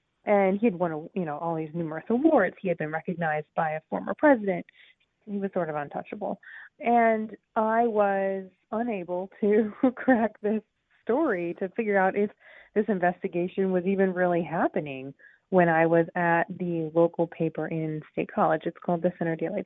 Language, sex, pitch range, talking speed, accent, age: English, female, 175-220 Hz, 170 wpm, American, 30-49